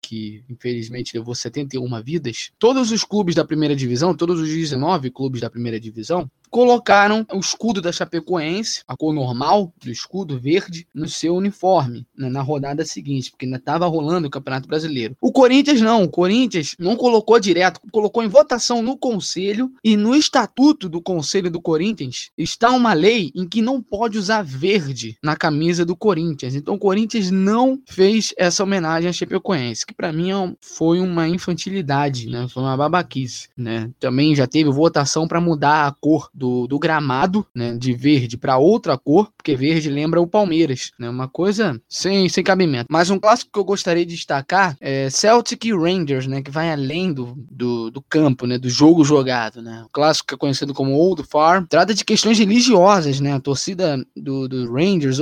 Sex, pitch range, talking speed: male, 135-195 Hz, 180 wpm